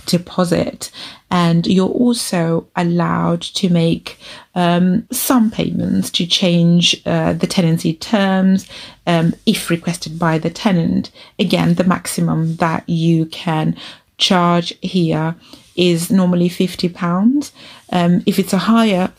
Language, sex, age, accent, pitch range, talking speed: English, female, 30-49, British, 165-190 Hz, 120 wpm